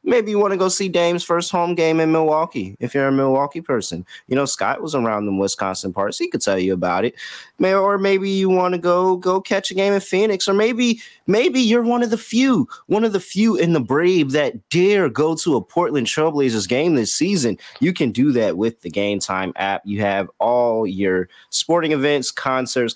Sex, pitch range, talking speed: male, 110-165 Hz, 220 wpm